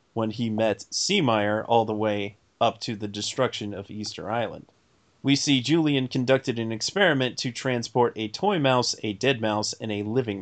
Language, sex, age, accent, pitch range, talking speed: English, male, 30-49, American, 105-130 Hz, 180 wpm